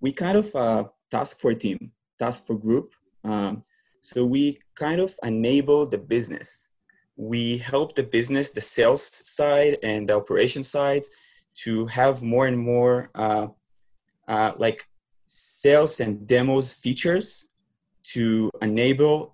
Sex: male